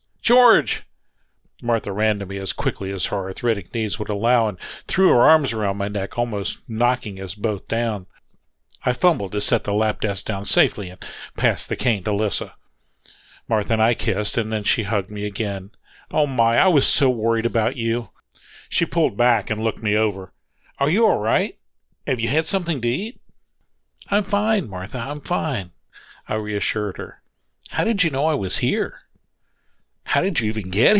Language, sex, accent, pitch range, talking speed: English, male, American, 100-130 Hz, 185 wpm